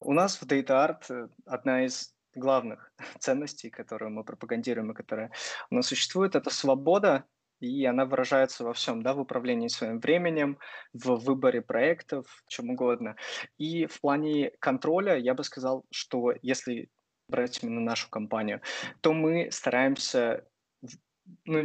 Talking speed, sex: 140 wpm, male